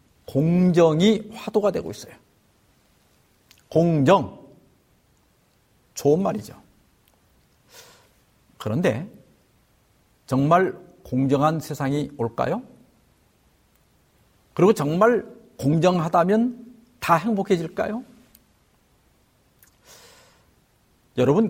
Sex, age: male, 50-69